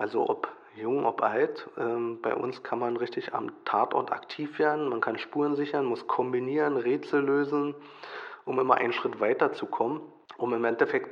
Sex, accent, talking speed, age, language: male, German, 175 wpm, 40-59, German